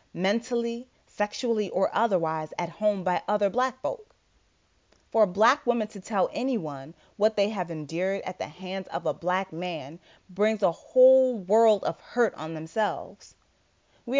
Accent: American